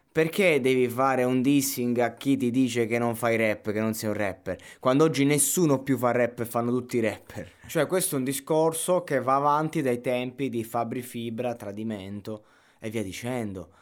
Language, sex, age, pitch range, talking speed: Italian, male, 20-39, 110-130 Hz, 200 wpm